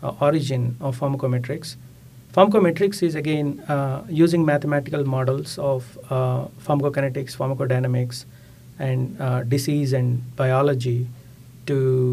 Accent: Indian